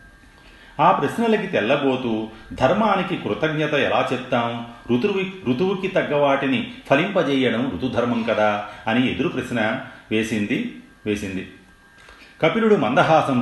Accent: native